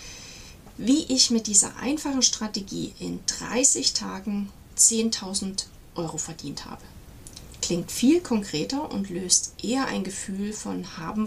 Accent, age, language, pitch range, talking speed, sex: German, 40-59, German, 180-245 Hz, 120 wpm, female